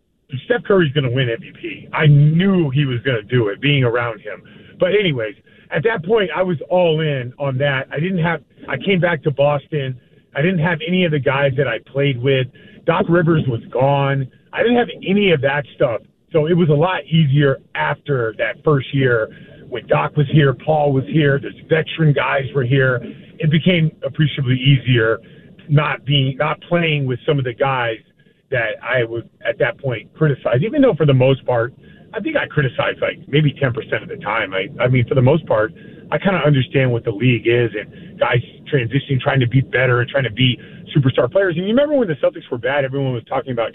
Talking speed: 215 wpm